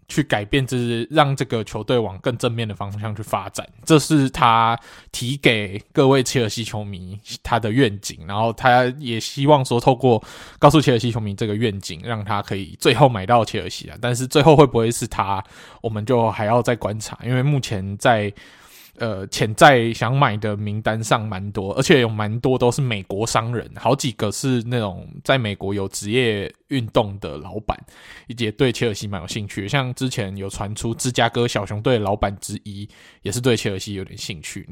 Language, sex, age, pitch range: Chinese, male, 20-39, 105-130 Hz